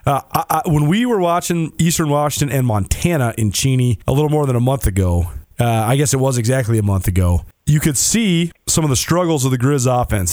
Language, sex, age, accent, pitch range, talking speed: English, male, 30-49, American, 120-155 Hz, 220 wpm